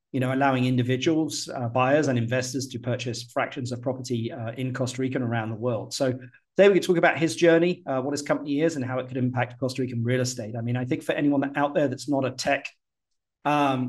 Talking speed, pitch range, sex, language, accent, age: 240 wpm, 120-145 Hz, male, English, British, 40-59